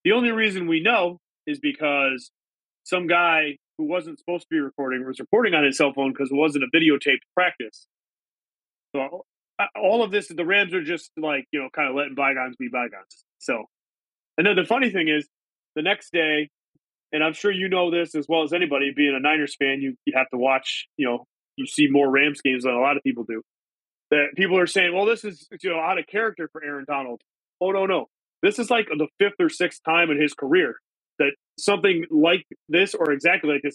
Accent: American